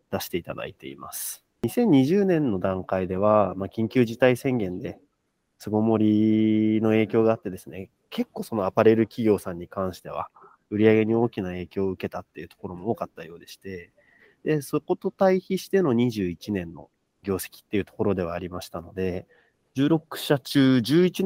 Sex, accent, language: male, native, Japanese